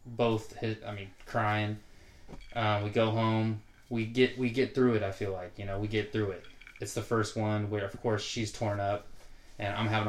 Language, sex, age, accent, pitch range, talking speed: English, male, 20-39, American, 100-110 Hz, 220 wpm